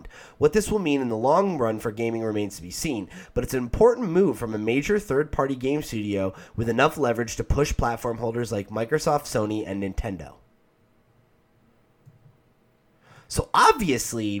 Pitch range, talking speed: 110-145 Hz, 165 wpm